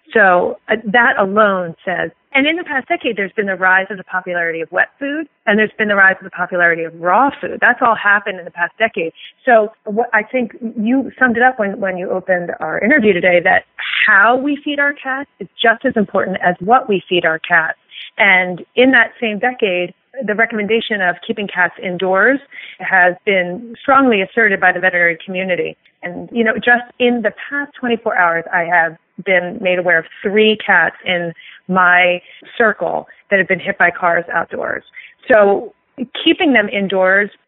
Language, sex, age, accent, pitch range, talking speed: English, female, 30-49, American, 180-240 Hz, 190 wpm